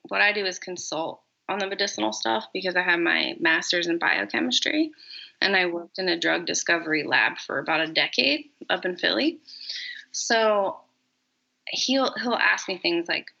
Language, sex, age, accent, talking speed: English, female, 20-39, American, 170 wpm